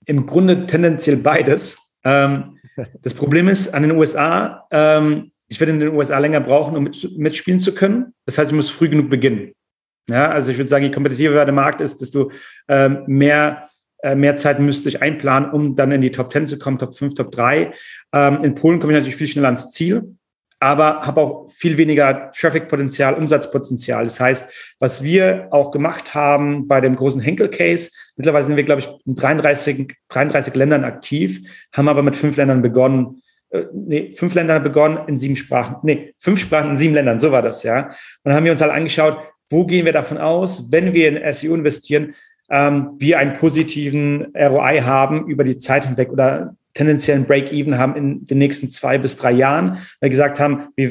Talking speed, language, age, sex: 185 wpm, German, 40-59, male